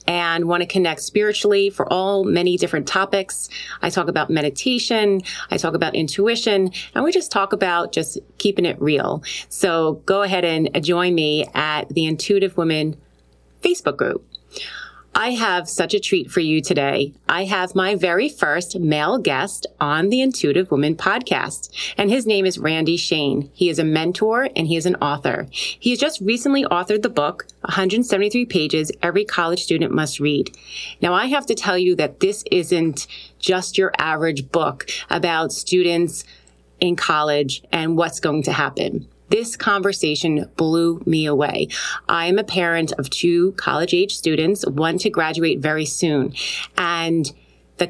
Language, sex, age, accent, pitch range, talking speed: English, female, 30-49, American, 160-200 Hz, 165 wpm